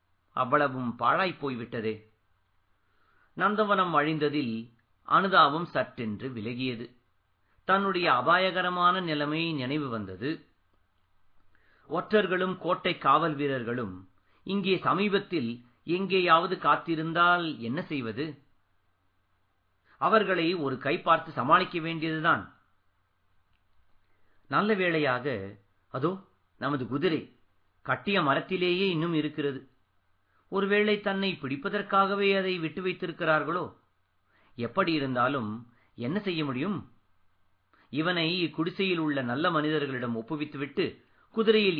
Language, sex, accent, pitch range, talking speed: Tamil, male, native, 110-175 Hz, 80 wpm